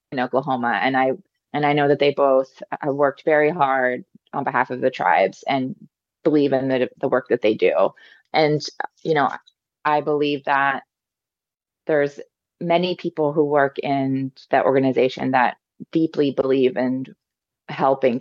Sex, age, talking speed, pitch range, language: female, 20-39, 155 wpm, 135-160 Hz, English